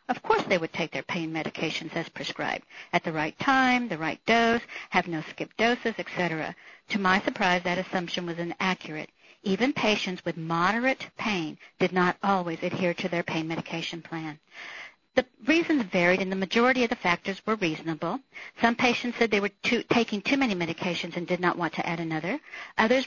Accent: American